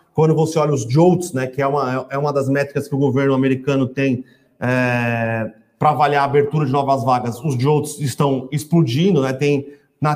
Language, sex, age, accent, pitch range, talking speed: Portuguese, male, 30-49, Brazilian, 135-155 Hz, 195 wpm